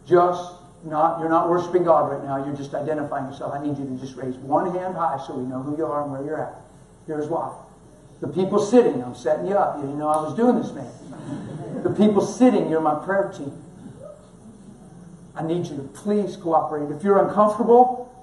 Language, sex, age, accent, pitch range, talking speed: English, male, 50-69, American, 160-260 Hz, 210 wpm